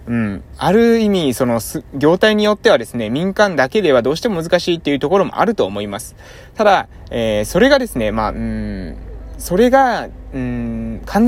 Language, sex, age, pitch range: Japanese, male, 20-39, 125-205 Hz